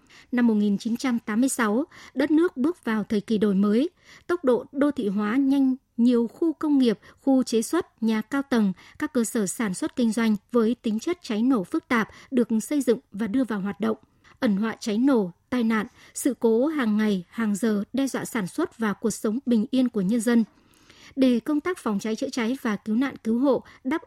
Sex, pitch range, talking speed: male, 220-265 Hz, 210 wpm